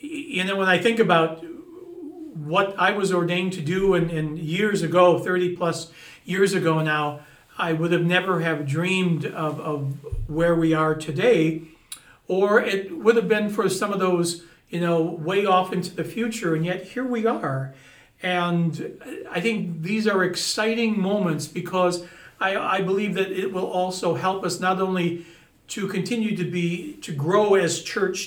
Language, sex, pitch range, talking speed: English, male, 160-195 Hz, 170 wpm